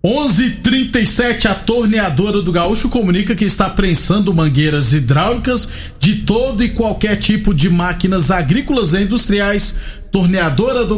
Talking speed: 135 wpm